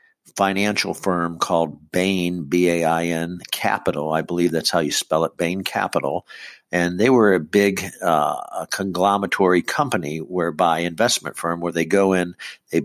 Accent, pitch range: American, 85-95 Hz